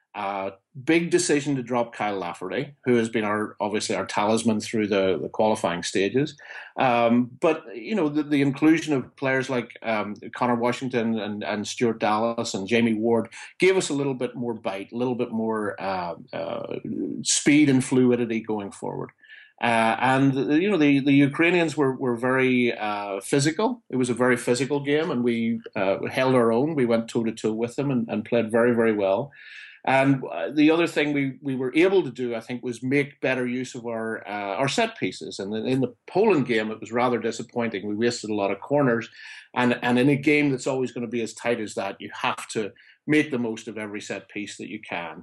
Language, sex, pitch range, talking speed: English, male, 110-135 Hz, 210 wpm